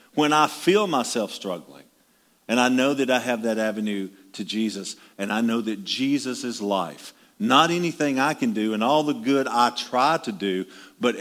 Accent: American